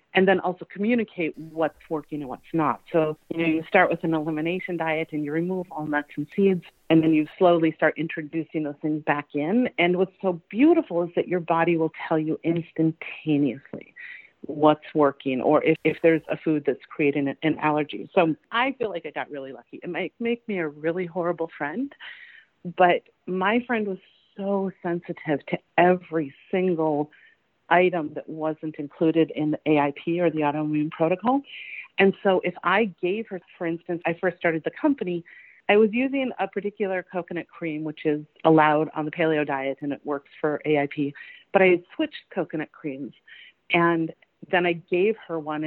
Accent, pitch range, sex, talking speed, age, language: American, 155-190 Hz, female, 180 wpm, 40-59, English